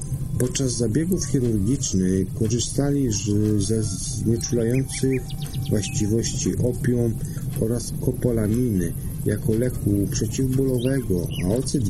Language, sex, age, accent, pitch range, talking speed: Polish, male, 50-69, native, 110-135 Hz, 75 wpm